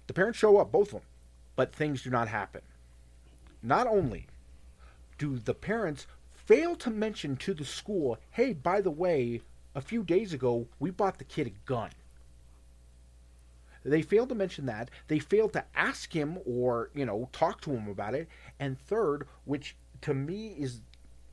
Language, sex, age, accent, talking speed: English, male, 40-59, American, 170 wpm